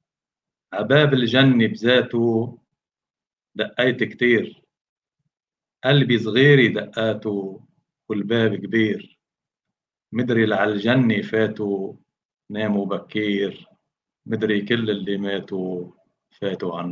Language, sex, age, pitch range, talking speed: English, male, 50-69, 105-125 Hz, 80 wpm